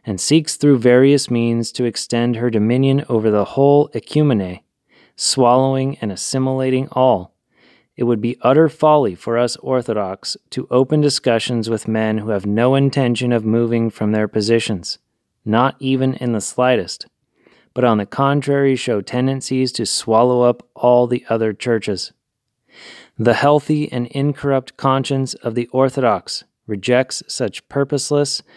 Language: English